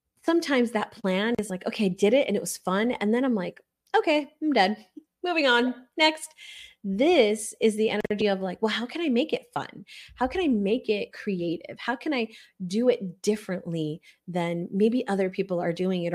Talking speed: 205 wpm